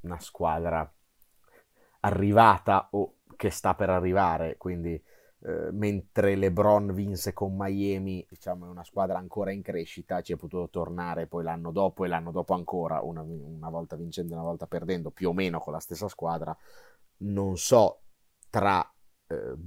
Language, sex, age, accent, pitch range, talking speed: Italian, male, 30-49, native, 90-110 Hz, 160 wpm